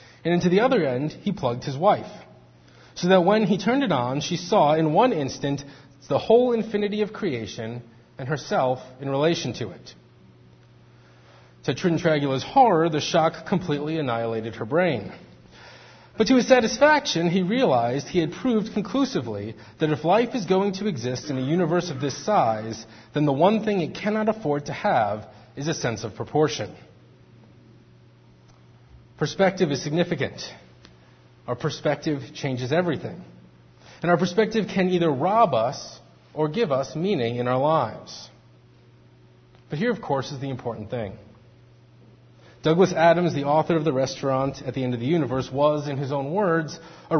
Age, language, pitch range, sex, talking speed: 30-49, English, 120-175 Hz, male, 160 wpm